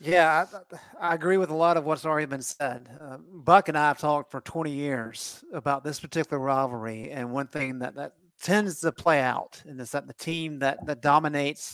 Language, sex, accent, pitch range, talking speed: English, male, American, 135-160 Hz, 210 wpm